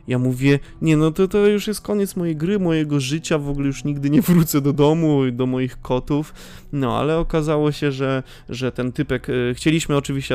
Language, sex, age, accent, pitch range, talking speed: Polish, male, 20-39, native, 150-220 Hz, 205 wpm